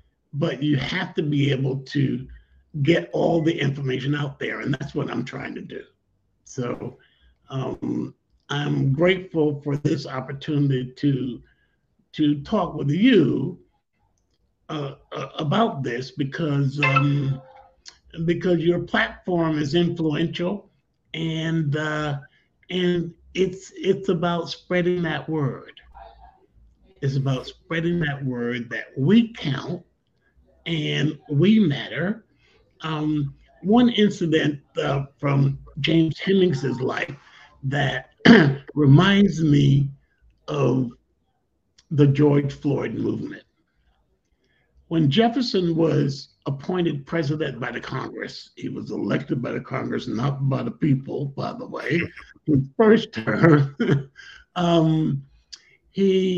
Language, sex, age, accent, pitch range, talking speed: English, male, 50-69, American, 140-170 Hz, 110 wpm